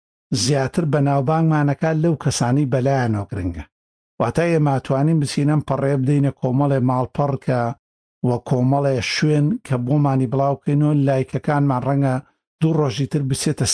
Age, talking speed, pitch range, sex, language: 60-79, 120 wpm, 120-150 Hz, male, Arabic